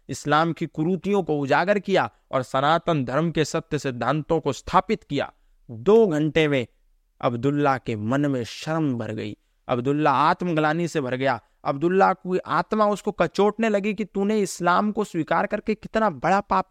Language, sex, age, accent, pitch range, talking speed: Hindi, male, 30-49, native, 125-175 Hz, 160 wpm